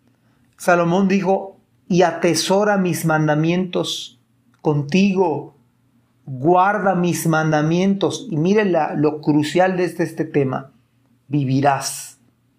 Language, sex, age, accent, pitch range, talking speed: Spanish, male, 40-59, Mexican, 125-185 Hz, 95 wpm